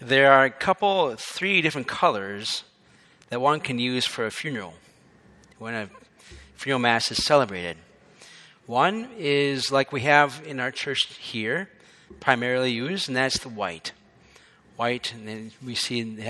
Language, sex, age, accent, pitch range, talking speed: English, male, 40-59, American, 120-155 Hz, 150 wpm